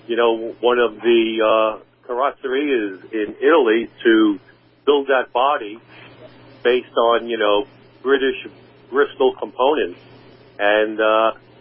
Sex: male